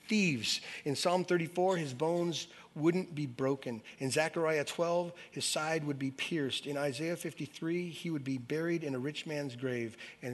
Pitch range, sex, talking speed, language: 145-185 Hz, male, 175 wpm, English